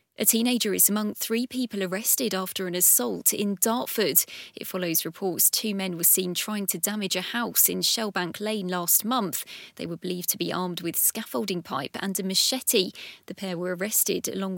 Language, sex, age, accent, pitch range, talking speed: English, female, 20-39, British, 185-235 Hz, 190 wpm